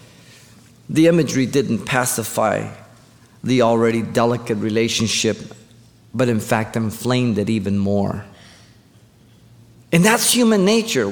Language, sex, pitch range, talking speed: English, male, 115-160 Hz, 105 wpm